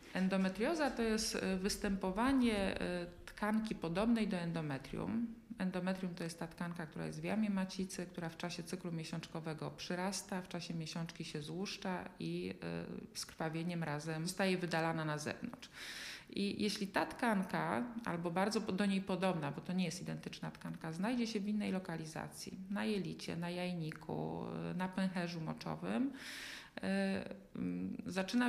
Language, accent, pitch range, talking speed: Polish, native, 165-195 Hz, 135 wpm